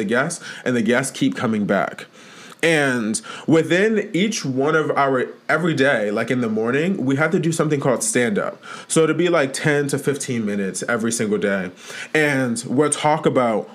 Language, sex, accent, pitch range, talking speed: English, male, American, 130-165 Hz, 180 wpm